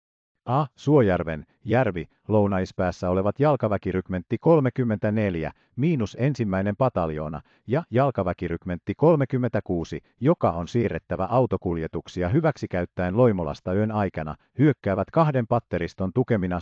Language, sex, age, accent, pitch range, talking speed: Finnish, male, 50-69, native, 85-125 Hz, 90 wpm